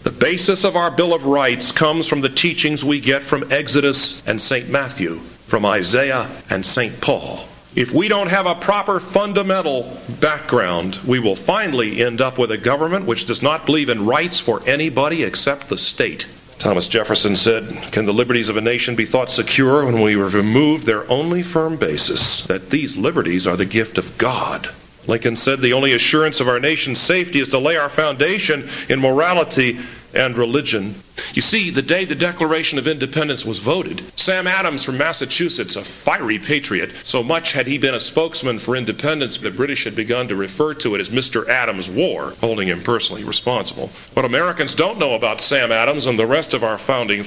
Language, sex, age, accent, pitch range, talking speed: English, male, 50-69, American, 120-160 Hz, 190 wpm